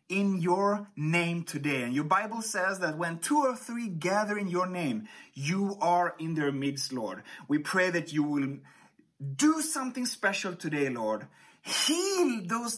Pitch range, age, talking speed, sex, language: 170-235 Hz, 30-49, 165 wpm, male, English